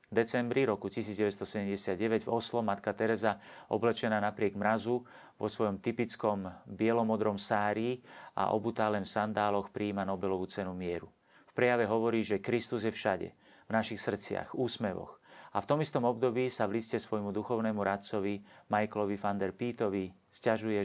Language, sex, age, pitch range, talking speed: Slovak, male, 40-59, 100-120 Hz, 145 wpm